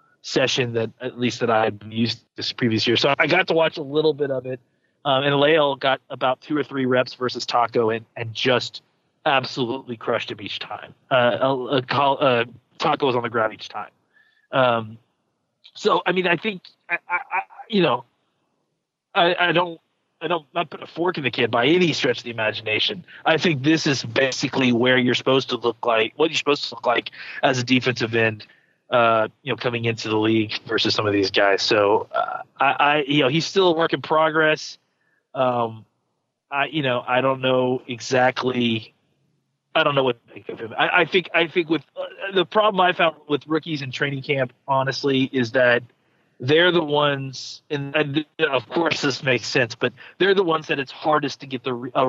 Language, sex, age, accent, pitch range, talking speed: English, male, 30-49, American, 120-155 Hz, 210 wpm